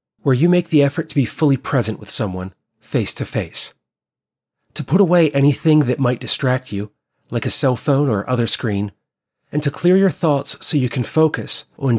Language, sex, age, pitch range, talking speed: English, male, 30-49, 115-150 Hz, 185 wpm